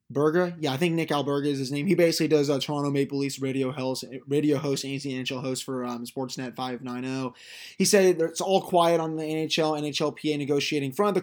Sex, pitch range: male, 130-160 Hz